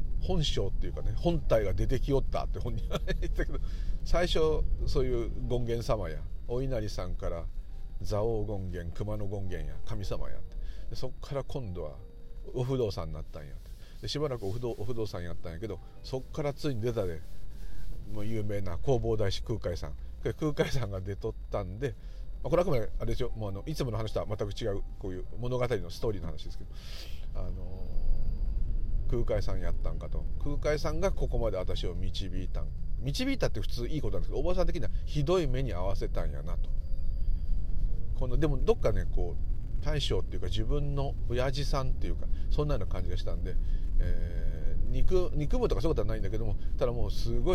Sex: male